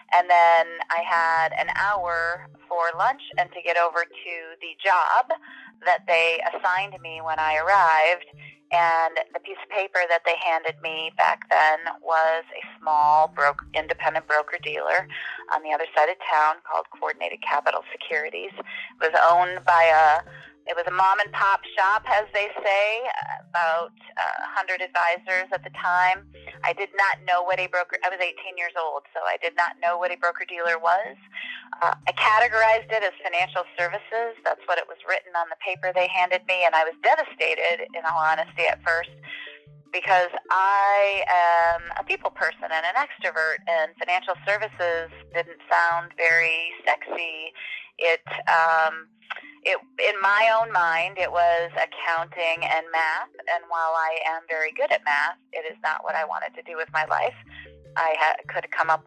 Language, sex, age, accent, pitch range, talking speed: English, female, 30-49, American, 160-185 Hz, 175 wpm